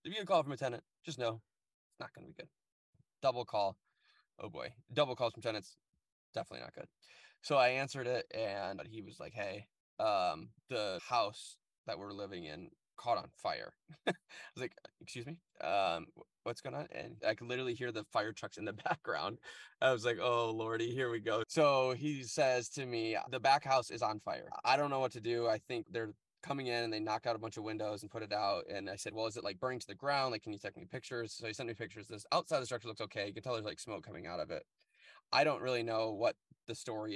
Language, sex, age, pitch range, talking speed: English, male, 10-29, 105-130 Hz, 245 wpm